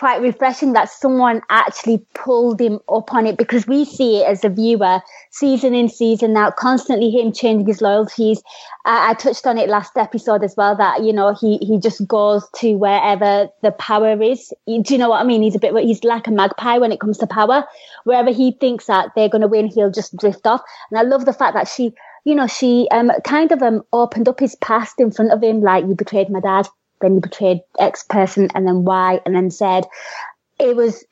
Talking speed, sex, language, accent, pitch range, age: 225 wpm, female, English, British, 200-235 Hz, 20-39